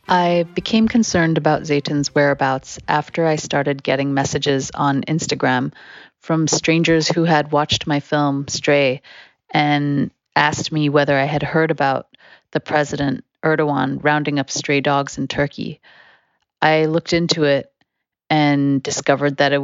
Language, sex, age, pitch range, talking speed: English, female, 30-49, 140-155 Hz, 140 wpm